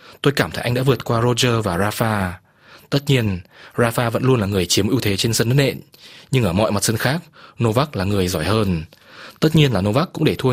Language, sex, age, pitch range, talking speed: Vietnamese, male, 20-39, 105-130 Hz, 240 wpm